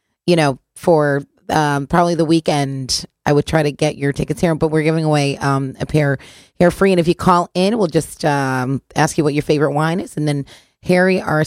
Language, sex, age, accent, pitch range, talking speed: English, female, 30-49, American, 145-175 Hz, 225 wpm